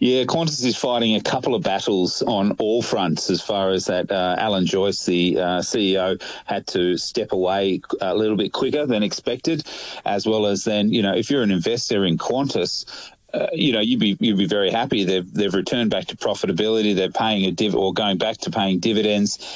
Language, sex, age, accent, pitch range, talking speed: English, male, 30-49, Australian, 95-110 Hz, 210 wpm